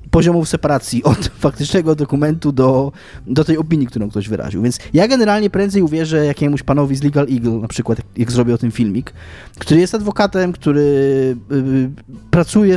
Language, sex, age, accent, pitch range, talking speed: Polish, male, 20-39, native, 115-155 Hz, 170 wpm